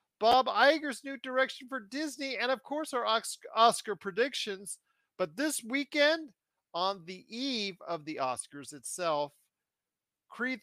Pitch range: 160-220 Hz